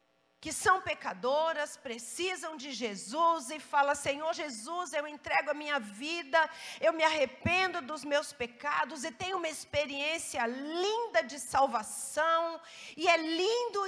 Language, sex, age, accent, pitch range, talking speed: Portuguese, female, 50-69, Brazilian, 275-370 Hz, 135 wpm